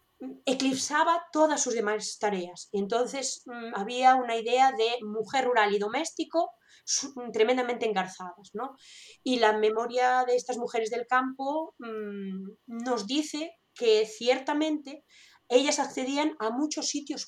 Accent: Spanish